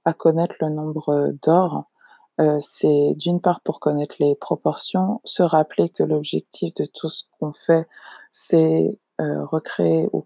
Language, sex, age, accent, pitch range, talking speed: French, female, 20-39, French, 155-180 Hz, 150 wpm